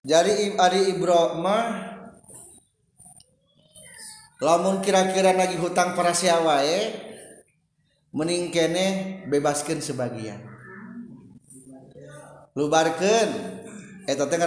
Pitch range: 150-185 Hz